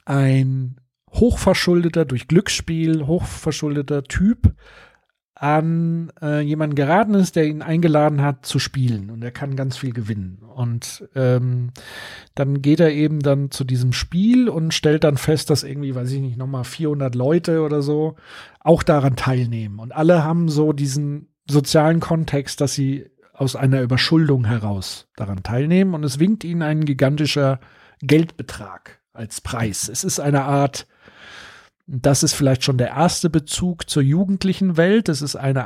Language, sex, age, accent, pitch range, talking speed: German, male, 40-59, German, 130-160 Hz, 155 wpm